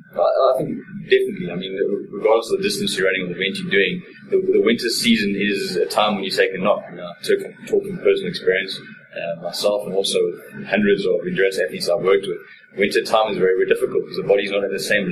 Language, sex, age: English, male, 20-39